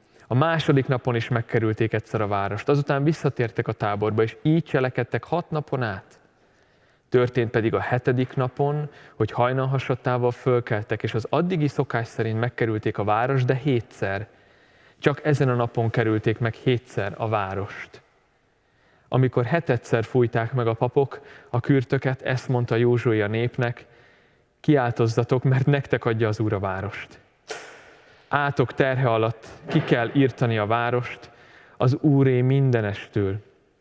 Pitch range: 110-130 Hz